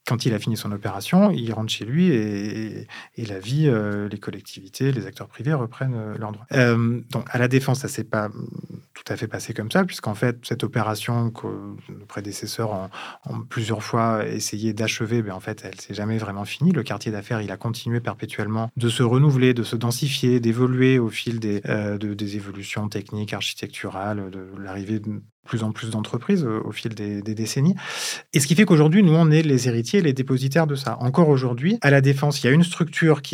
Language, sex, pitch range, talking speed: French, male, 110-145 Hz, 215 wpm